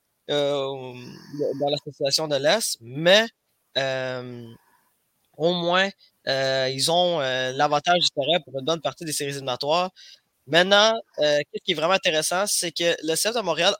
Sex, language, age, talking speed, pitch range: male, French, 20-39, 160 wpm, 130-170 Hz